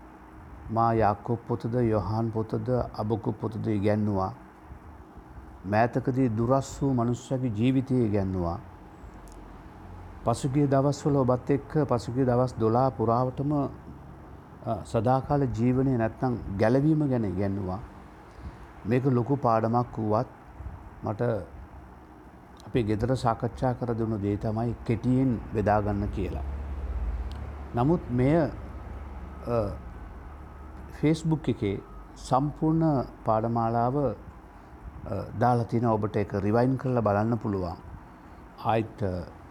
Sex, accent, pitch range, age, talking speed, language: male, Indian, 100-130 Hz, 60-79, 75 wpm, English